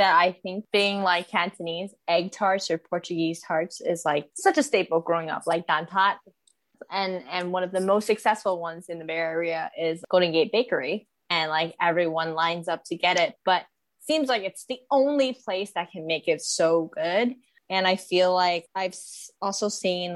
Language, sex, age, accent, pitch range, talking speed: English, female, 20-39, American, 170-220 Hz, 195 wpm